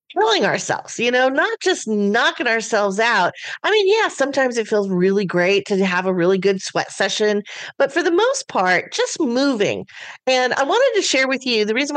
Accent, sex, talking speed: American, female, 200 wpm